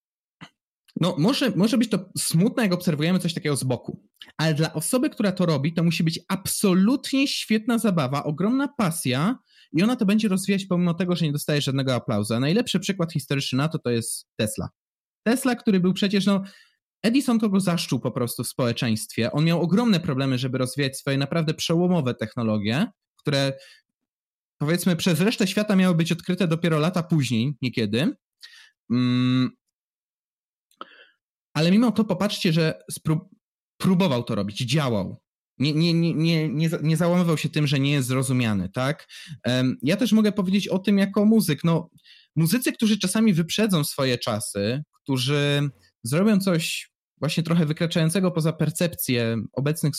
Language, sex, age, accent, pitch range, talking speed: Polish, male, 20-39, native, 140-195 Hz, 150 wpm